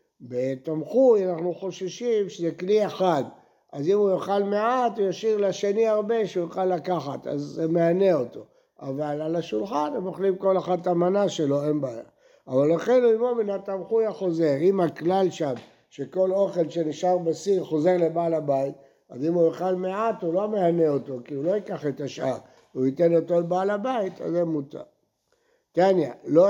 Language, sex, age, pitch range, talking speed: Hebrew, male, 60-79, 155-195 Hz, 170 wpm